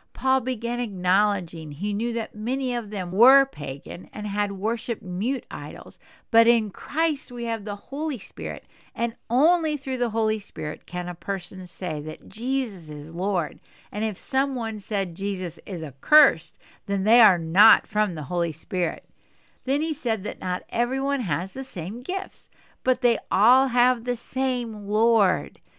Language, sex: English, female